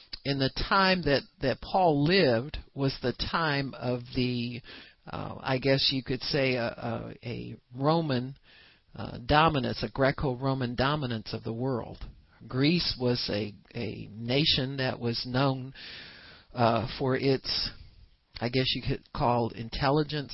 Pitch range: 110-135 Hz